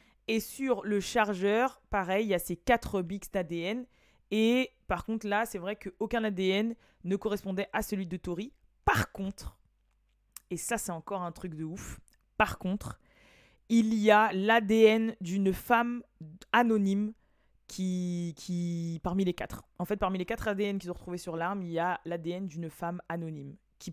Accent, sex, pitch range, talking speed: French, female, 170-210 Hz, 175 wpm